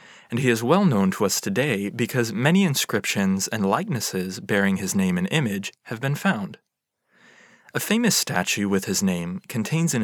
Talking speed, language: 175 wpm, English